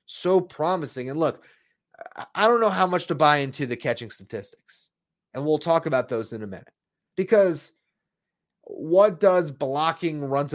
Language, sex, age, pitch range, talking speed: English, male, 30-49, 140-185 Hz, 160 wpm